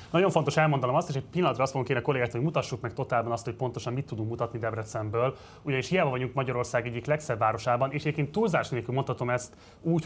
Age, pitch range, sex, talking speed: 20-39, 120-150 Hz, male, 205 wpm